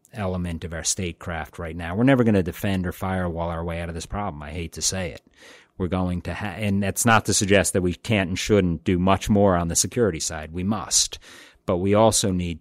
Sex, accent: male, American